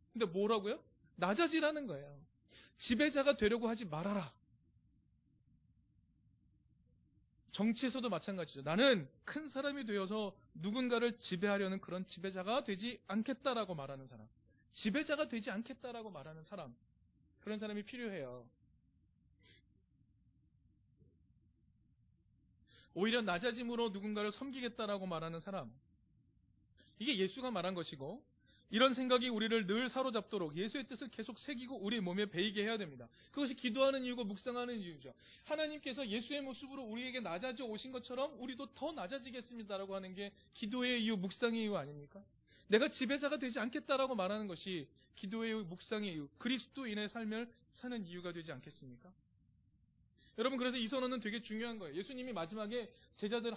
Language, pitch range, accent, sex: Korean, 180-250 Hz, native, male